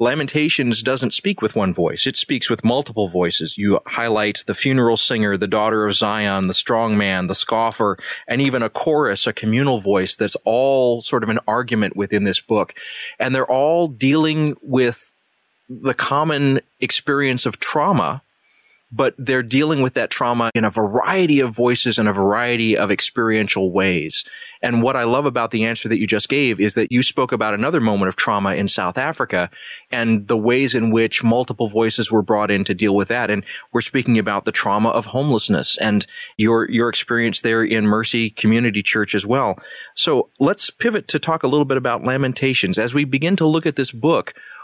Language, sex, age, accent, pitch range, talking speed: English, male, 30-49, American, 110-135 Hz, 190 wpm